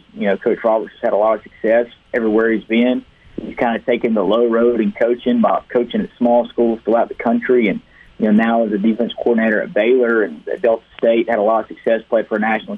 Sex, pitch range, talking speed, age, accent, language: male, 115-125 Hz, 245 wpm, 40-59, American, English